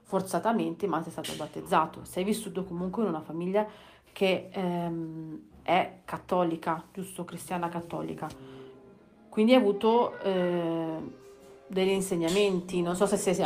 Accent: native